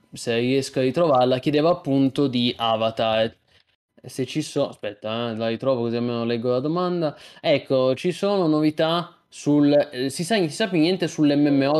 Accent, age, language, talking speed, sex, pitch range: native, 20-39, Italian, 165 wpm, male, 120-150 Hz